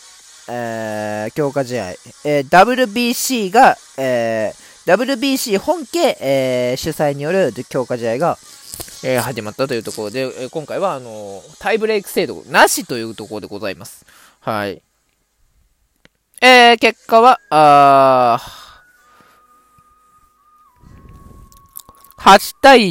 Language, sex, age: Japanese, male, 20-39